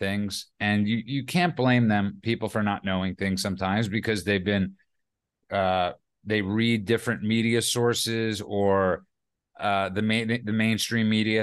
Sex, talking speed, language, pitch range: male, 150 wpm, English, 105-125 Hz